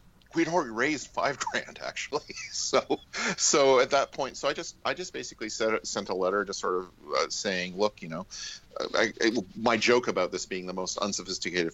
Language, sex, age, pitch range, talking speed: English, male, 40-59, 90-125 Hz, 200 wpm